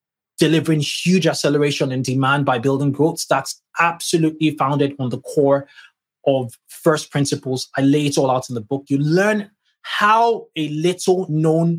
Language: English